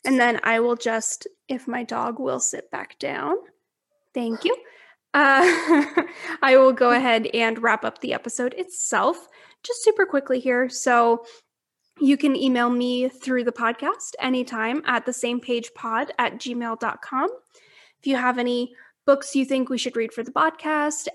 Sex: female